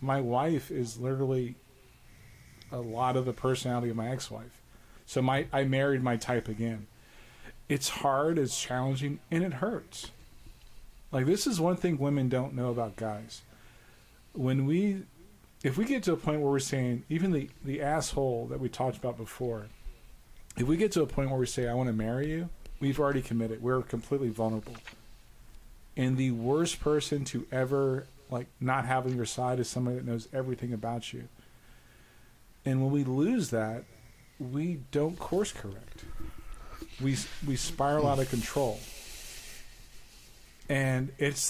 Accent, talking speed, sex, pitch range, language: American, 160 wpm, male, 120-140 Hz, English